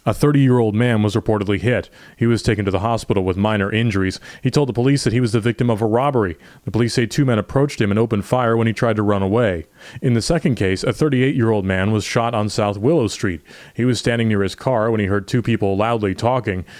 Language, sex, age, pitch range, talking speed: English, male, 30-49, 105-125 Hz, 245 wpm